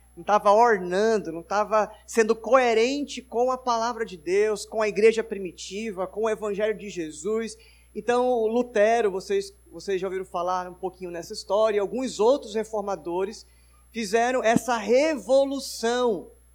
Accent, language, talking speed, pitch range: Brazilian, Portuguese, 145 wpm, 180-225 Hz